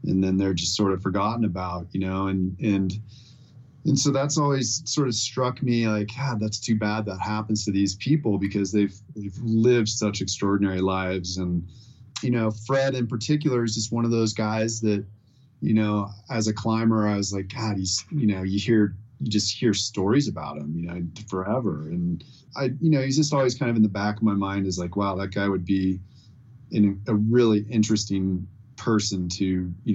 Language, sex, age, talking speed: English, male, 30-49, 205 wpm